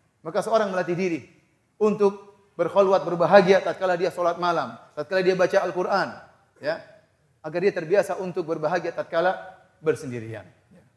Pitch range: 175-265 Hz